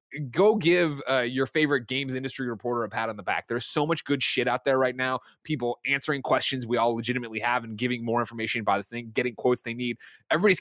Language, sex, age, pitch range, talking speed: English, male, 20-39, 115-150 Hz, 230 wpm